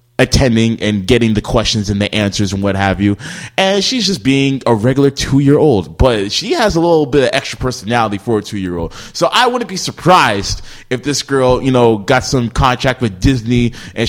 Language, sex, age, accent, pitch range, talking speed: English, male, 20-39, American, 105-135 Hz, 200 wpm